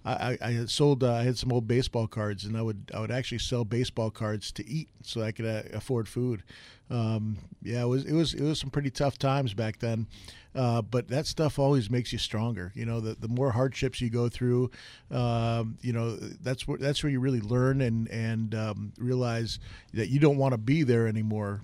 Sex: male